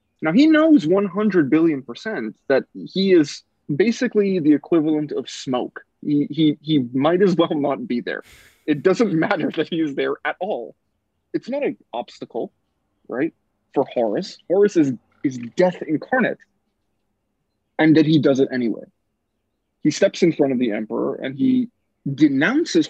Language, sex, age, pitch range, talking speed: English, male, 20-39, 125-185 Hz, 155 wpm